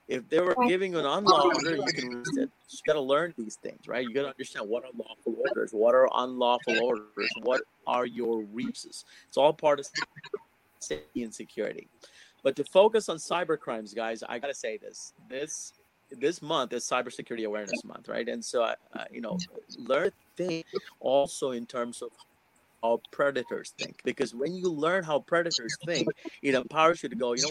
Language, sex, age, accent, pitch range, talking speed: English, male, 30-49, American, 125-180 Hz, 190 wpm